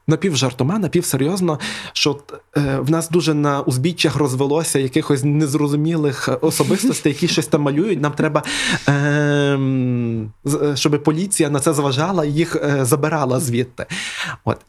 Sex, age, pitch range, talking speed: male, 20-39, 140-160 Hz, 120 wpm